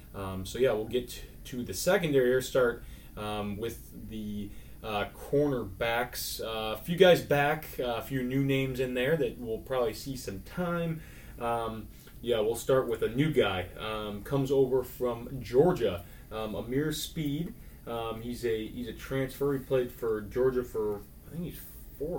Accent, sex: American, male